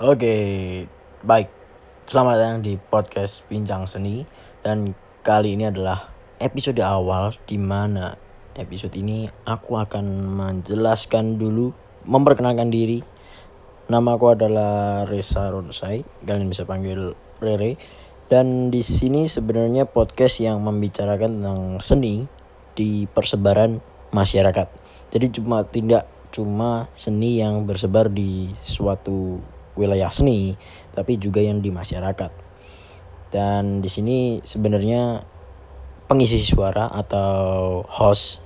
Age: 20-39